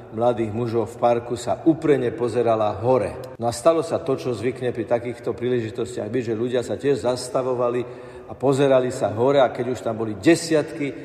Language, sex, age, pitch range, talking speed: Slovak, male, 50-69, 115-135 Hz, 180 wpm